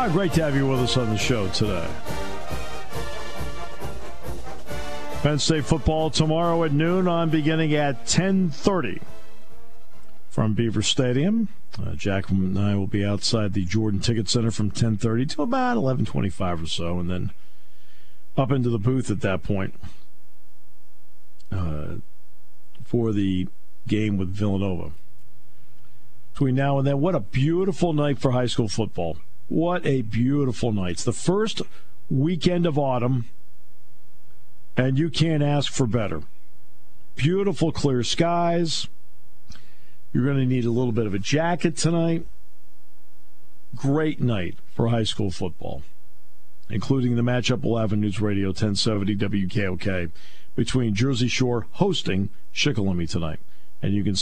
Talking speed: 135 wpm